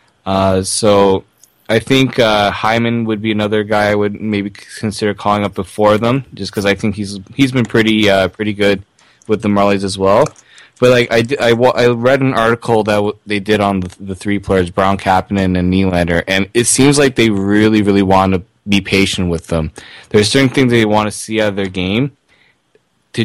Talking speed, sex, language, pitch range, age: 205 wpm, male, English, 95-110 Hz, 20-39